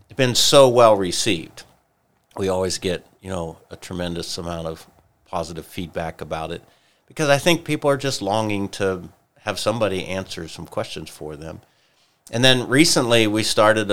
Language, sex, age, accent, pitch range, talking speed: English, male, 50-69, American, 90-105 Hz, 160 wpm